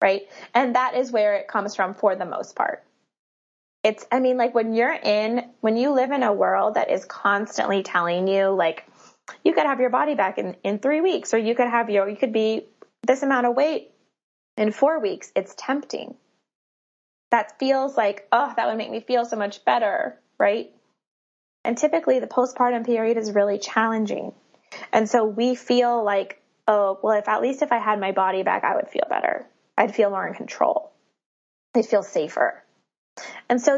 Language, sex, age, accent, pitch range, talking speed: English, female, 20-39, American, 200-265 Hz, 195 wpm